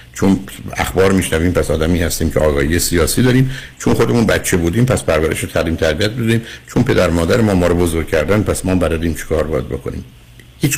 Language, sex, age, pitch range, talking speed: Persian, male, 60-79, 85-110 Hz, 190 wpm